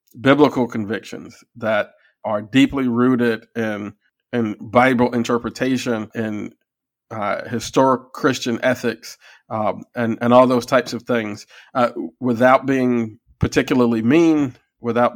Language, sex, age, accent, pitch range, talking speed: English, male, 40-59, American, 115-130 Hz, 120 wpm